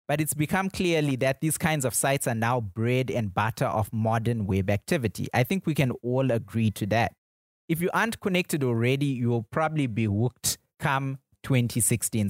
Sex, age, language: male, 20-39, English